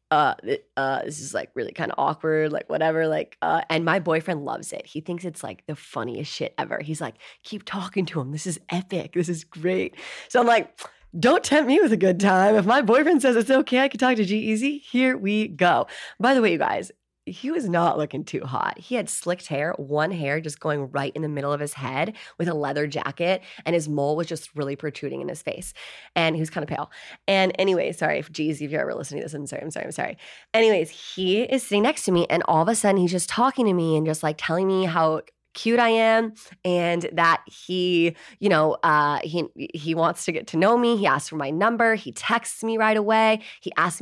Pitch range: 160-220 Hz